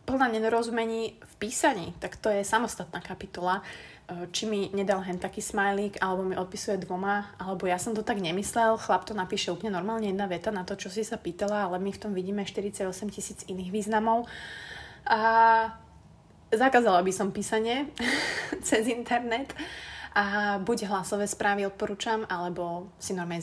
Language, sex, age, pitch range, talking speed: Slovak, female, 20-39, 180-225 Hz, 160 wpm